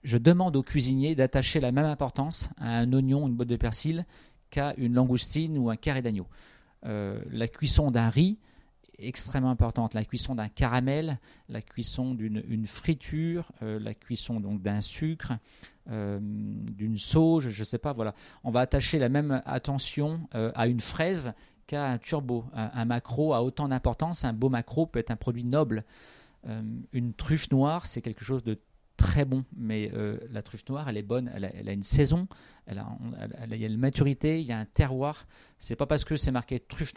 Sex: male